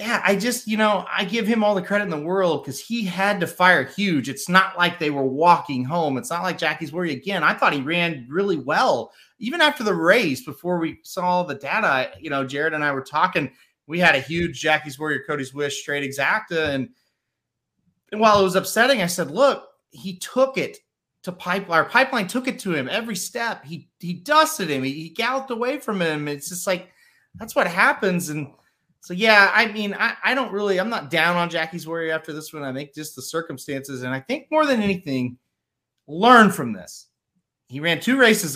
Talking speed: 220 wpm